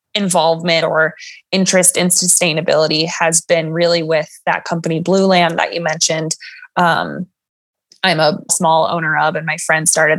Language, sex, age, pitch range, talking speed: English, female, 20-39, 165-190 Hz, 155 wpm